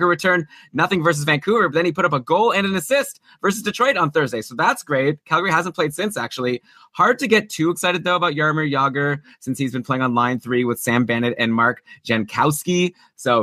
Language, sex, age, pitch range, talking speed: English, male, 20-39, 130-175 Hz, 220 wpm